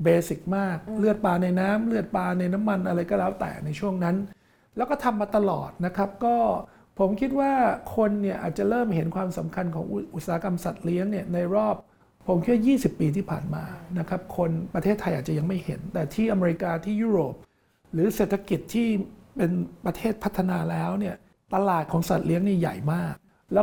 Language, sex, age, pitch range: Thai, male, 60-79, 170-205 Hz